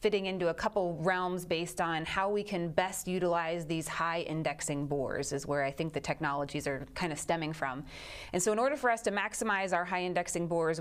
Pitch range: 160-190 Hz